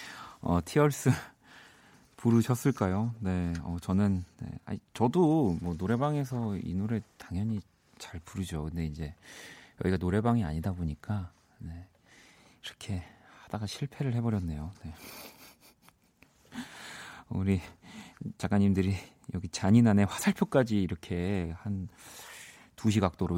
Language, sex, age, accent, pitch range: Korean, male, 40-59, native, 90-135 Hz